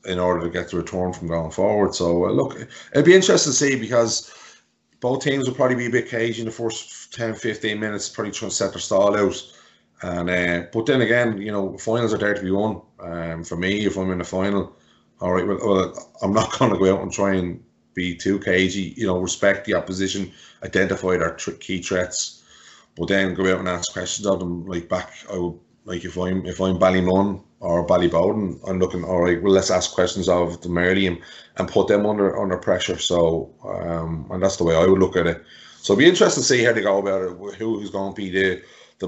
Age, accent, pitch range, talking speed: 30-49, Irish, 90-100 Hz, 240 wpm